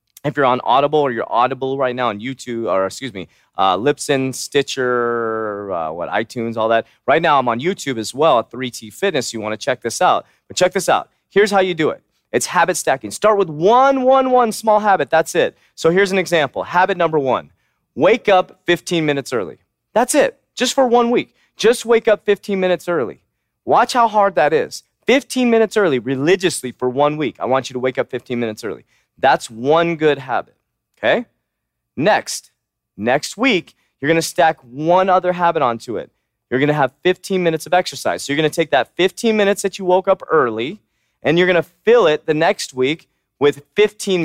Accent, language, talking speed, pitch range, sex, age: American, English, 210 wpm, 130-190 Hz, male, 30-49